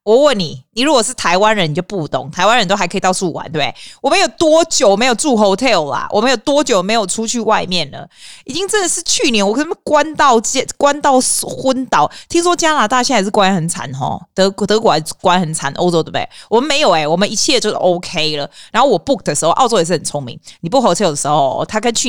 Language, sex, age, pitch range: Chinese, female, 20-39, 165-260 Hz